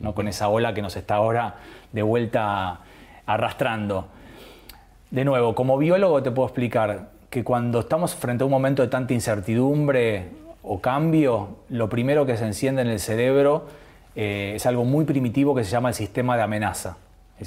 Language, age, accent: Spanish, 30-49, Argentinian